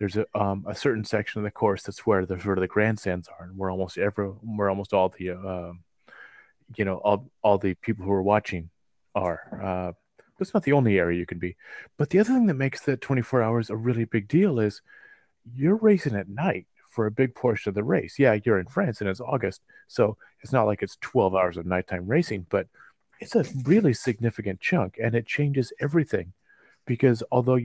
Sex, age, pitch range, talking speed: male, 30-49, 100-125 Hz, 215 wpm